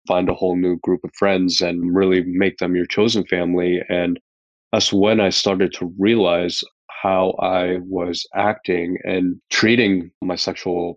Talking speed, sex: 160 wpm, male